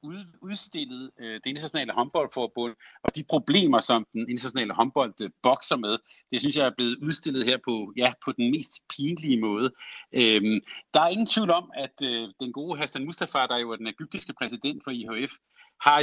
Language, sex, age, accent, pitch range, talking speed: Danish, male, 60-79, native, 120-165 Hz, 170 wpm